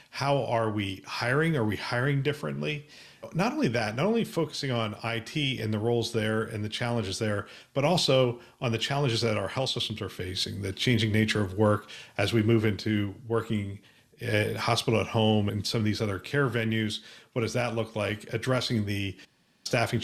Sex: male